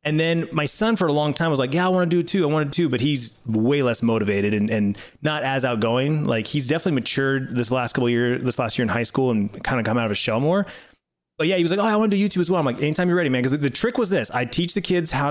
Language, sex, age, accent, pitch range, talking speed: English, male, 30-49, American, 120-155 Hz, 330 wpm